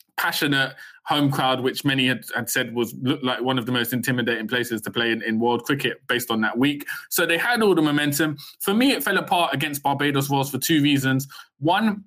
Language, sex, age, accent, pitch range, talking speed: English, male, 20-39, British, 125-155 Hz, 225 wpm